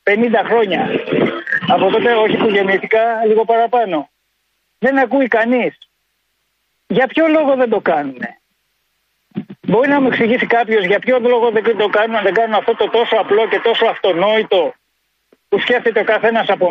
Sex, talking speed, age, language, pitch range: male, 150 wpm, 50-69, Greek, 210-265 Hz